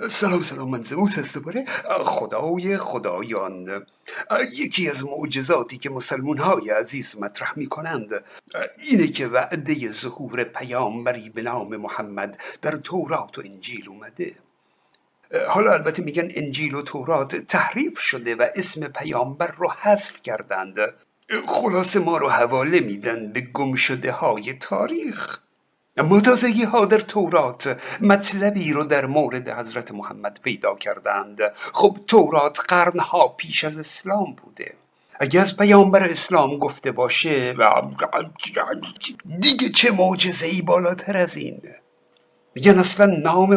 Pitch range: 140-200 Hz